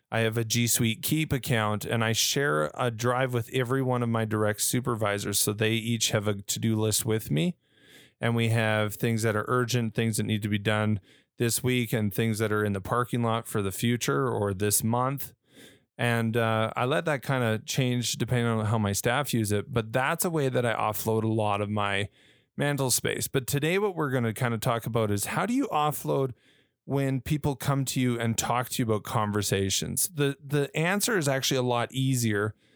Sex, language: male, English